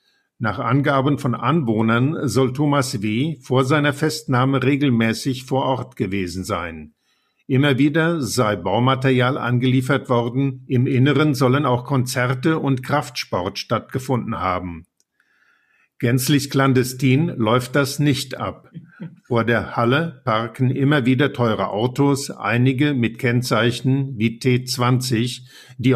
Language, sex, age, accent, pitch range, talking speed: German, male, 50-69, German, 120-140 Hz, 115 wpm